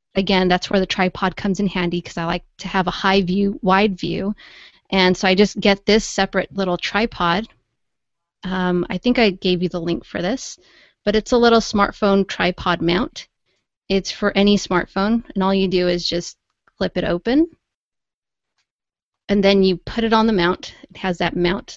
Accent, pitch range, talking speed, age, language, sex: American, 180-210 Hz, 190 wpm, 30-49, English, female